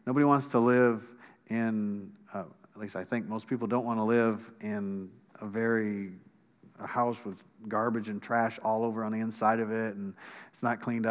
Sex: male